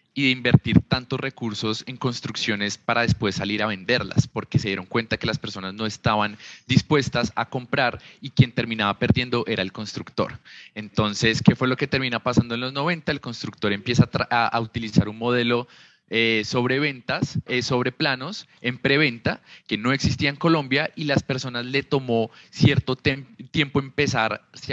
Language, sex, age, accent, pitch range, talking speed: Spanish, male, 20-39, Colombian, 110-130 Hz, 175 wpm